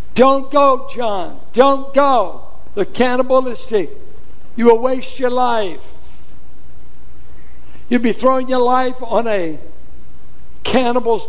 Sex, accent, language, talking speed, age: male, American, English, 105 wpm, 60-79